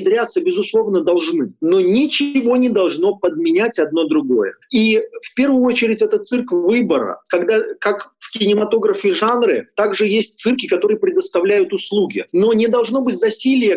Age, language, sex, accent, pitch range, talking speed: 30-49, Russian, male, native, 215-350 Hz, 145 wpm